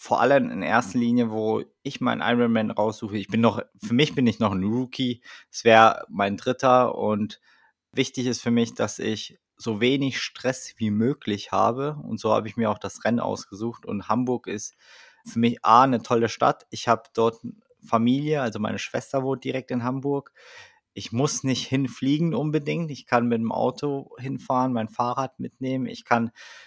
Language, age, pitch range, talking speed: German, 20-39, 115-140 Hz, 185 wpm